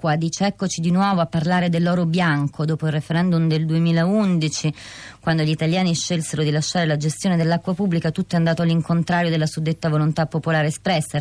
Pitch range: 145-170 Hz